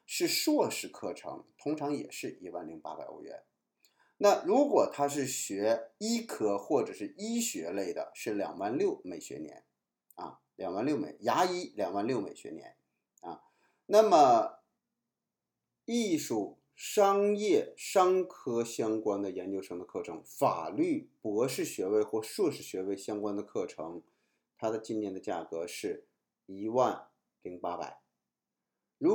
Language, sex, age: Chinese, male, 50-69